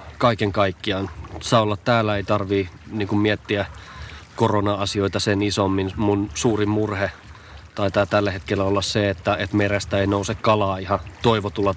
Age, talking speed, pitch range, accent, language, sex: 30-49, 145 wpm, 95-110 Hz, native, Finnish, male